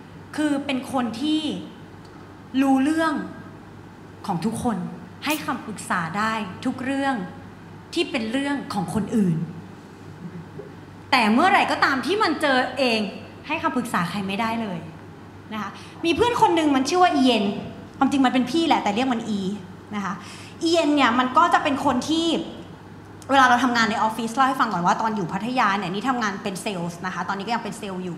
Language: Thai